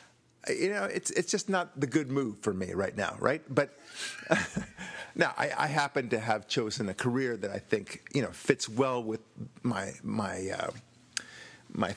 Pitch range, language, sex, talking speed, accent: 115-155 Hz, English, male, 180 wpm, American